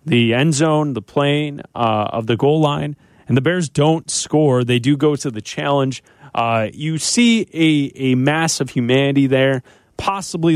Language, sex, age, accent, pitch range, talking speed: English, male, 30-49, American, 115-155 Hz, 175 wpm